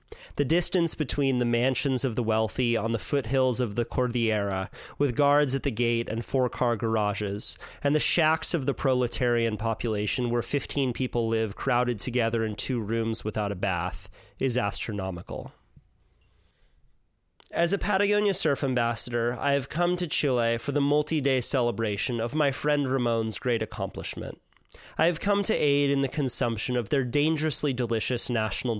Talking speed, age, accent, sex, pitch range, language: 160 wpm, 30-49, American, male, 115-145 Hz, English